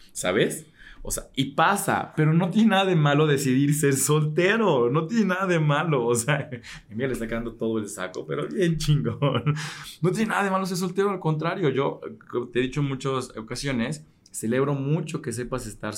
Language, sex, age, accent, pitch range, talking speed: Spanish, male, 20-39, Mexican, 115-155 Hz, 200 wpm